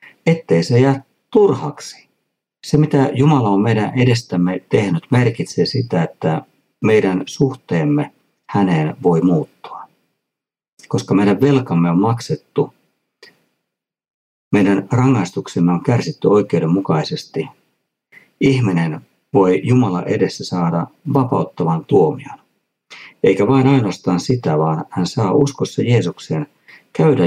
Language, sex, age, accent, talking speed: Finnish, male, 50-69, native, 100 wpm